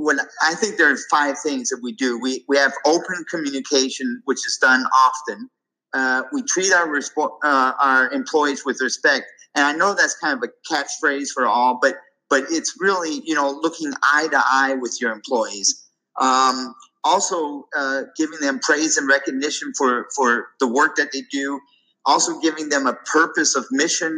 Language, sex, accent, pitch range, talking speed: English, male, American, 130-160 Hz, 185 wpm